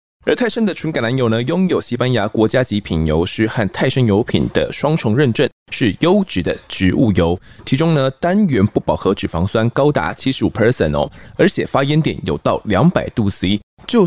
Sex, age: male, 20-39